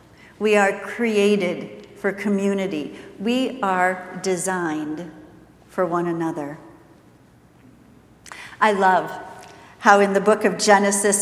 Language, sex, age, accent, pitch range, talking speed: English, female, 50-69, American, 185-235 Hz, 100 wpm